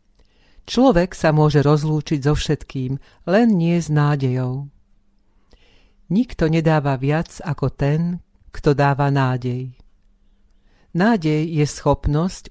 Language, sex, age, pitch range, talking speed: Slovak, female, 50-69, 135-165 Hz, 100 wpm